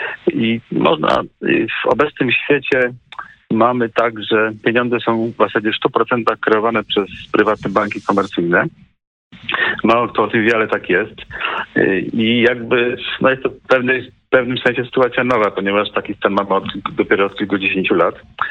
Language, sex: Polish, male